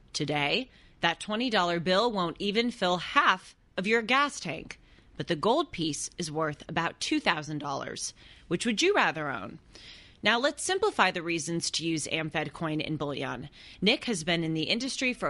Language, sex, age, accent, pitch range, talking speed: English, female, 30-49, American, 160-215 Hz, 165 wpm